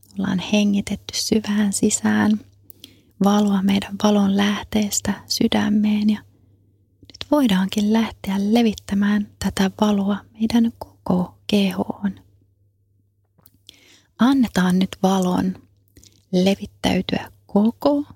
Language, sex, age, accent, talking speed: Finnish, female, 30-49, native, 80 wpm